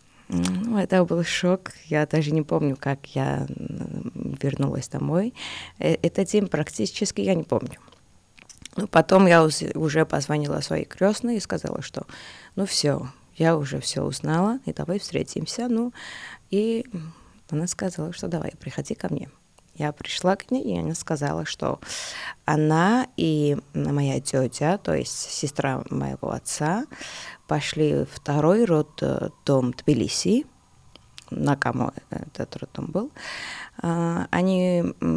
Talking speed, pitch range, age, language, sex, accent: 130 wpm, 145-195 Hz, 20-39, Russian, female, native